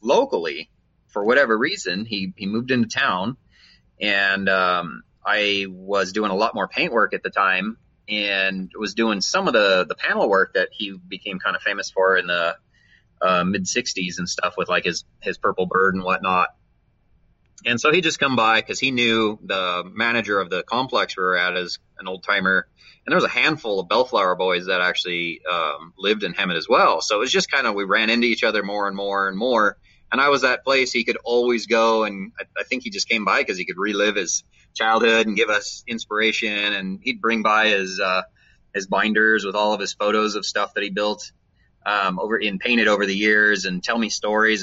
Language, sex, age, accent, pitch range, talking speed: English, male, 30-49, American, 95-115 Hz, 220 wpm